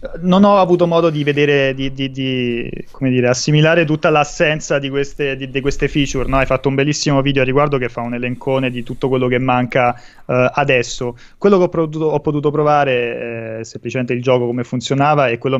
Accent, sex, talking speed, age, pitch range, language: native, male, 210 wpm, 20-39, 125-145 Hz, Italian